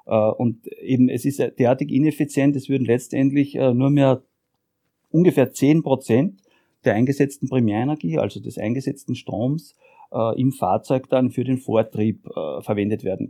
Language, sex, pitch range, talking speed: German, male, 125-145 Hz, 145 wpm